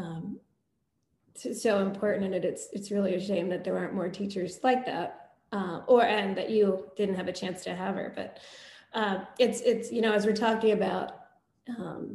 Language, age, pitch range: English, 20-39, 195-220 Hz